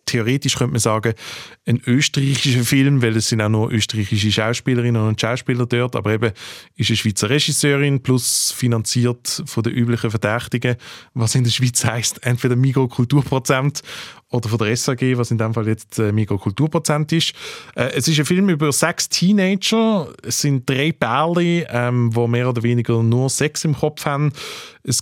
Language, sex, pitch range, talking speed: German, male, 115-145 Hz, 170 wpm